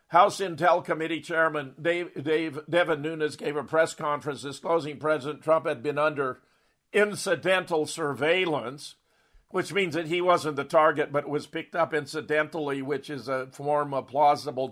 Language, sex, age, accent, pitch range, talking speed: English, male, 50-69, American, 145-165 Hz, 155 wpm